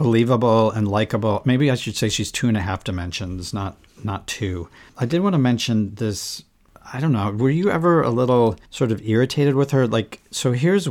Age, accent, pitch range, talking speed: 40-59, American, 100-125 Hz, 210 wpm